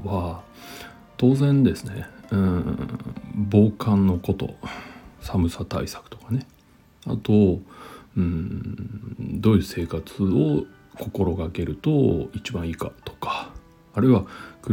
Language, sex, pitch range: Japanese, male, 95-120 Hz